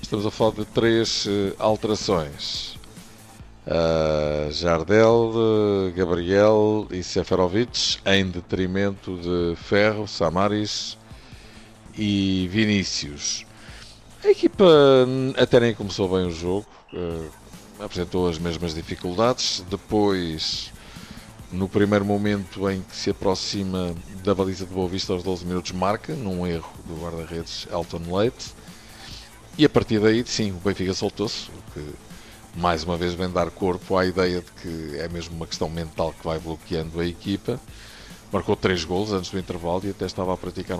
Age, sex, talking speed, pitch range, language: 50-69, male, 135 wpm, 90-110 Hz, Portuguese